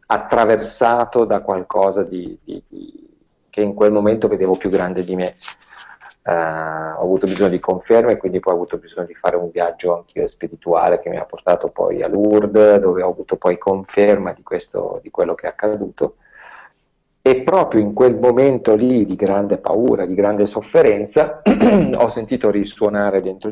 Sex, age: male, 40-59